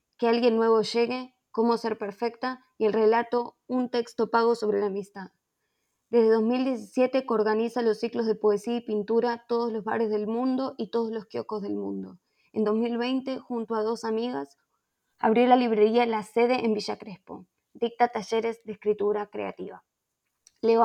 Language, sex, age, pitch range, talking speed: Spanish, female, 20-39, 210-235 Hz, 160 wpm